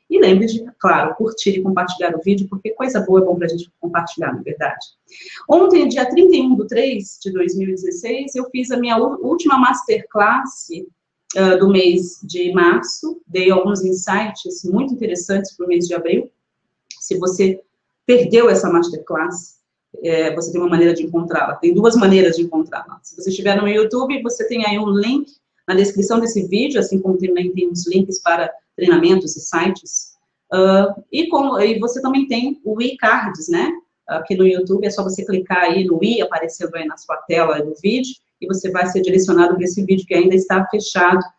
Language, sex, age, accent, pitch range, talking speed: Portuguese, female, 40-59, Brazilian, 180-245 Hz, 180 wpm